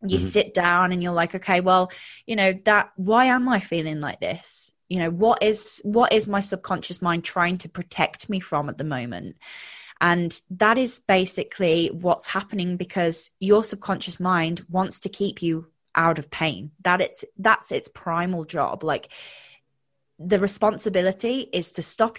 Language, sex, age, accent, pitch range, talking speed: English, female, 20-39, British, 165-195 Hz, 170 wpm